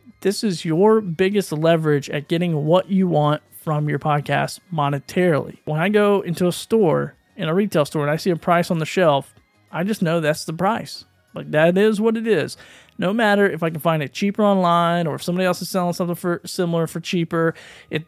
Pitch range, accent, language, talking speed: 155-185 Hz, American, English, 215 wpm